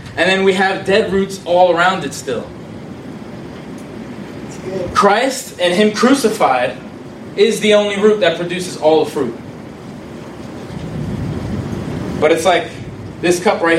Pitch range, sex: 125-165 Hz, male